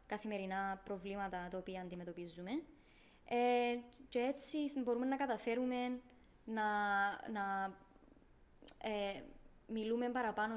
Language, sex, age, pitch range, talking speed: Greek, female, 20-39, 200-235 Hz, 90 wpm